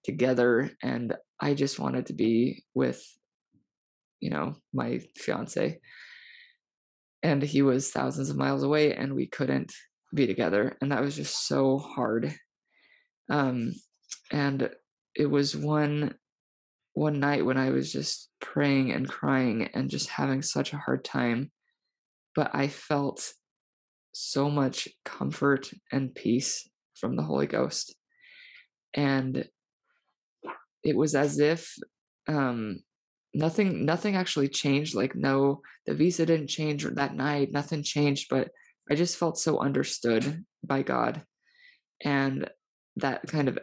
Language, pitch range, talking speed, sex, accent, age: English, 135-160 Hz, 130 wpm, female, American, 20-39